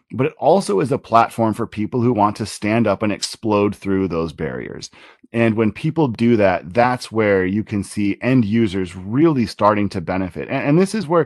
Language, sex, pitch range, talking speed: English, male, 105-135 Hz, 210 wpm